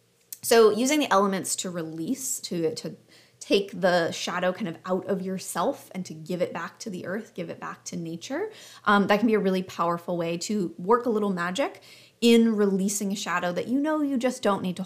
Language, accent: English, American